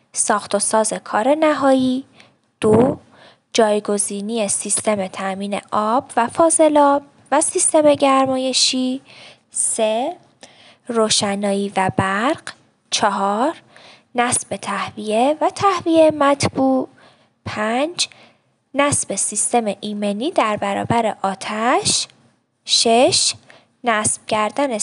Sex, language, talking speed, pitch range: female, Persian, 85 wpm, 205-290 Hz